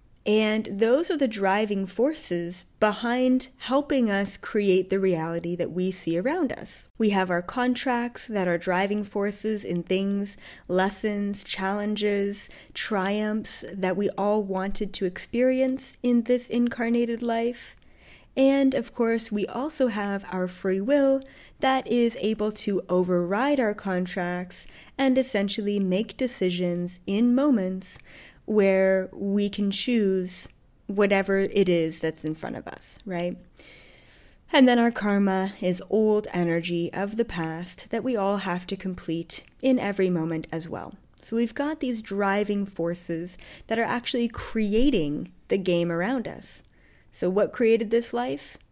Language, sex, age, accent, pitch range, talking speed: English, female, 20-39, American, 185-235 Hz, 140 wpm